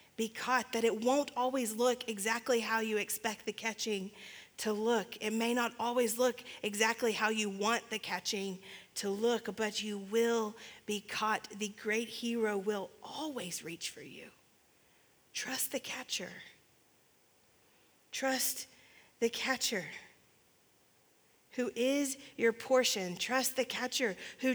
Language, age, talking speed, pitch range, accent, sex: English, 30-49, 135 wpm, 220-255 Hz, American, female